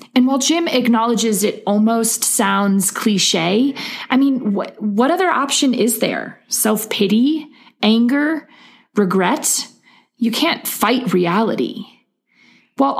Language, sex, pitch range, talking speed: English, female, 195-250 Hz, 105 wpm